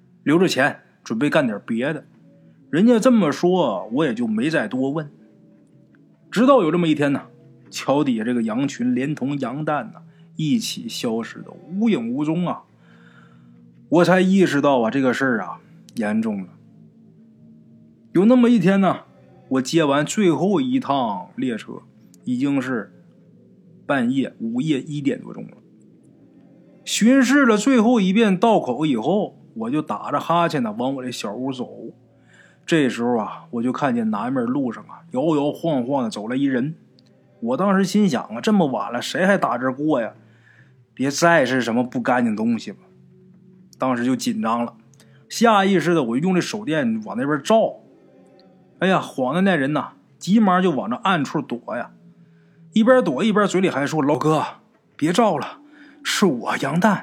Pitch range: 140-235 Hz